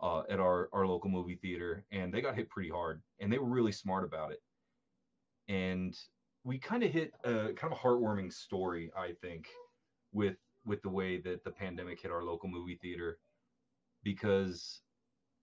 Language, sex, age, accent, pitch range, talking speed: English, male, 30-49, American, 90-105 Hz, 180 wpm